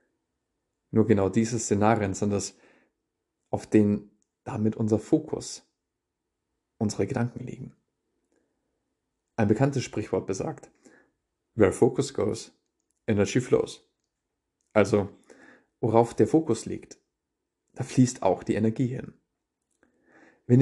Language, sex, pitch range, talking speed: German, male, 105-120 Hz, 100 wpm